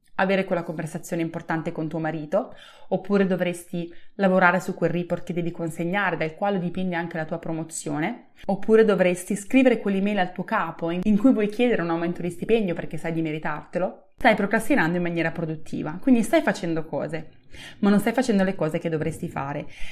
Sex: female